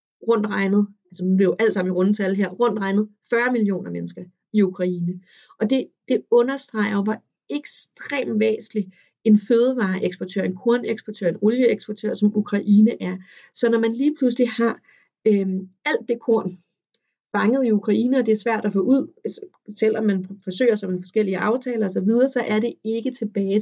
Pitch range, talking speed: 190-230 Hz, 170 wpm